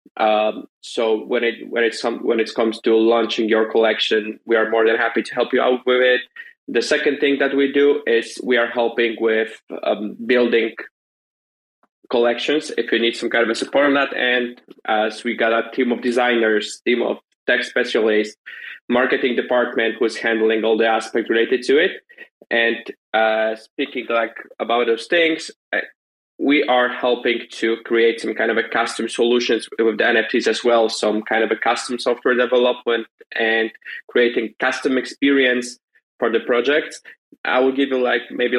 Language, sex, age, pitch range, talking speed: English, male, 20-39, 115-125 Hz, 180 wpm